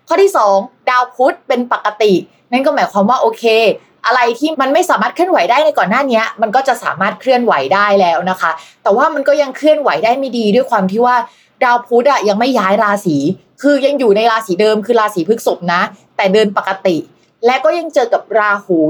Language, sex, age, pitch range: Thai, female, 20-39, 195-260 Hz